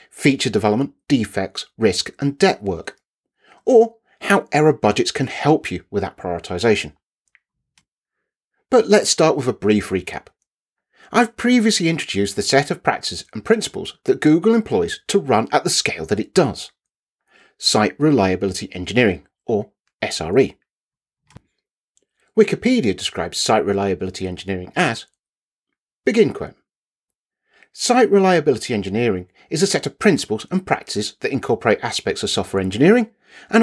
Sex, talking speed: male, 130 wpm